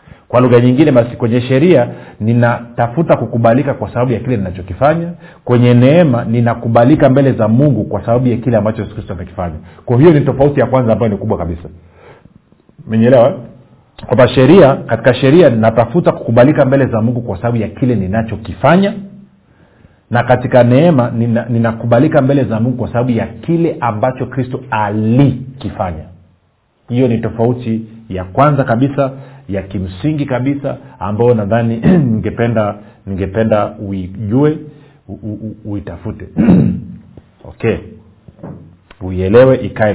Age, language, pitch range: 40-59, Swahili, 100-130 Hz